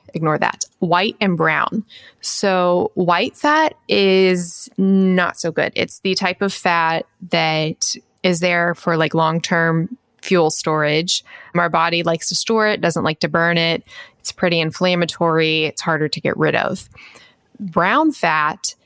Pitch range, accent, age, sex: 160-195 Hz, American, 20-39, female